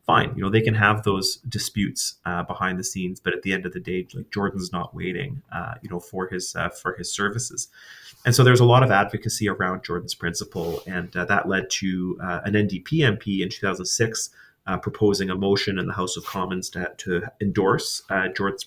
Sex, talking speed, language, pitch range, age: male, 215 wpm, English, 90-110 Hz, 30-49